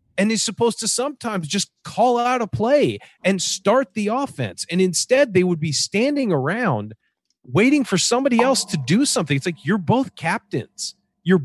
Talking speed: 180 wpm